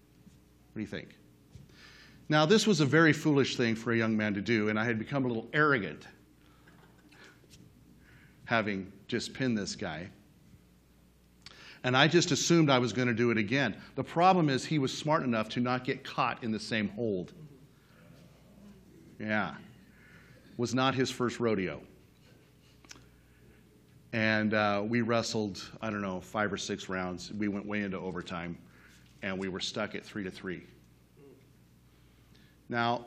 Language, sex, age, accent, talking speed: English, male, 40-59, American, 155 wpm